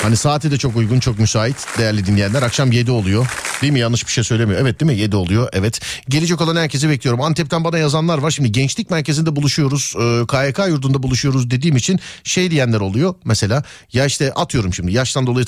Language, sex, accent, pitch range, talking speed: Turkish, male, native, 115-170 Hz, 200 wpm